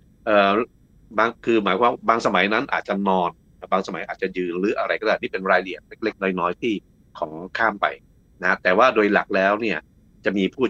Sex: male